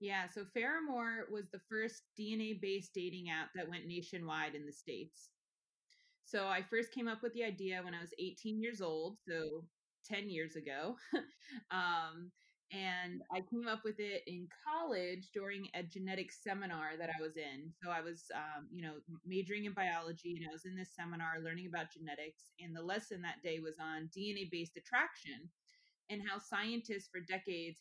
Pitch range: 170-210 Hz